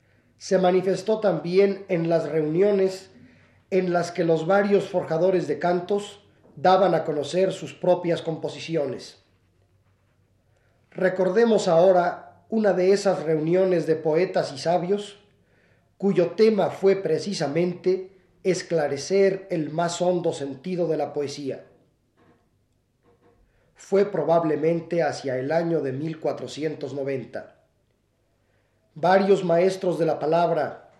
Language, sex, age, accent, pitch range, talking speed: Spanish, male, 40-59, Mexican, 145-185 Hz, 105 wpm